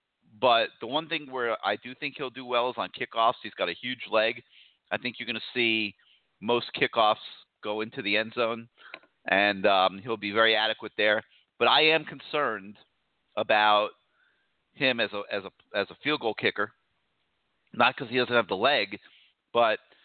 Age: 40-59